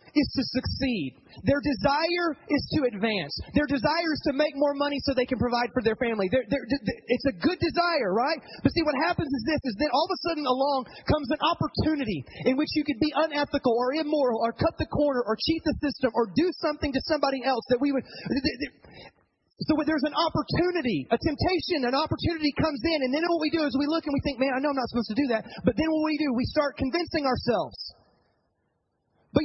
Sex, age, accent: male, 30-49, American